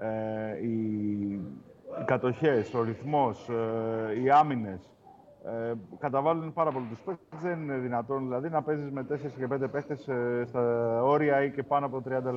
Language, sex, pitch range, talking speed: Greek, male, 115-160 Hz, 160 wpm